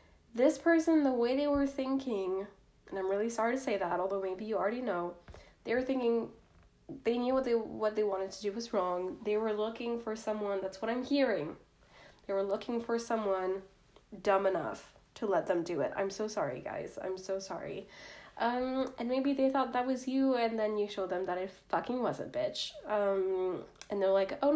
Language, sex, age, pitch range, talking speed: English, female, 10-29, 200-265 Hz, 210 wpm